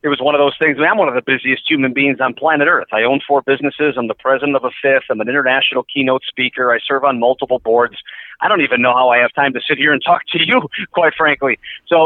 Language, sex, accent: English, male, American